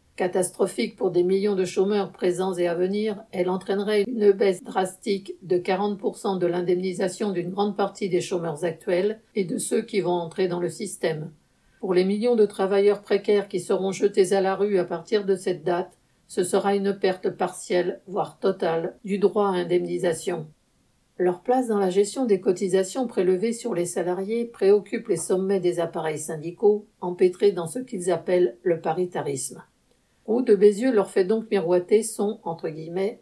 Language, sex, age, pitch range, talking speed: French, female, 50-69, 180-205 Hz, 175 wpm